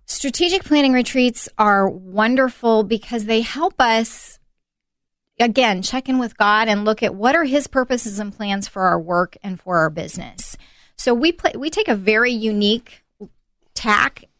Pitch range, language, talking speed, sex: 195-245 Hz, English, 165 wpm, female